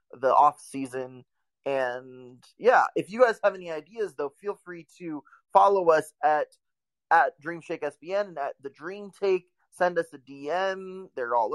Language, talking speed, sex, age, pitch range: English, 165 wpm, male, 20-39, 135-180 Hz